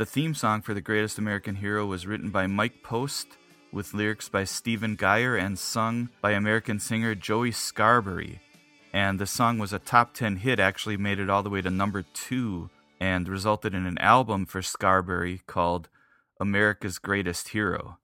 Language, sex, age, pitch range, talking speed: English, male, 30-49, 100-130 Hz, 175 wpm